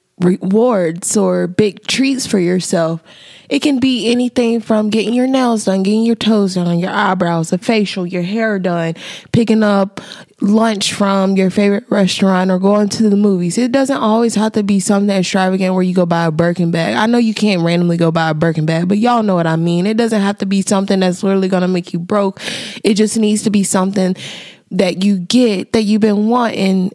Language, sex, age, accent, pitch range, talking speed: English, female, 20-39, American, 185-220 Hz, 210 wpm